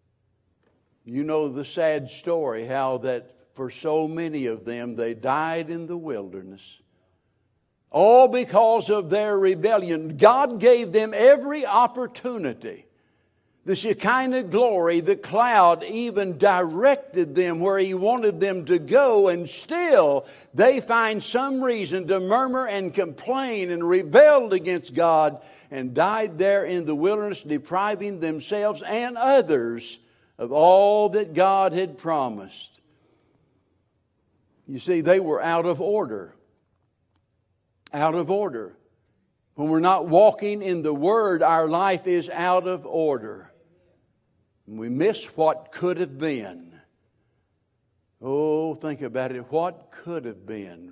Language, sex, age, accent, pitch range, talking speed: English, male, 60-79, American, 120-195 Hz, 125 wpm